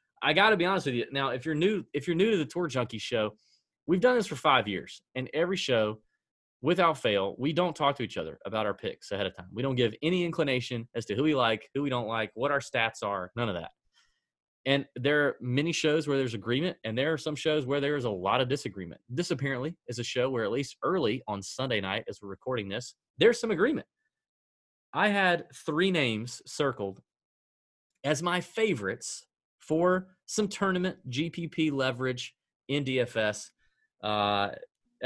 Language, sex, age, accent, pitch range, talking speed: English, male, 30-49, American, 110-155 Hz, 200 wpm